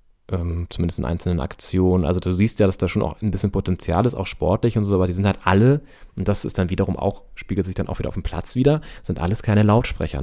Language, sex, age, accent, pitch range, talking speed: German, male, 30-49, German, 90-110 Hz, 260 wpm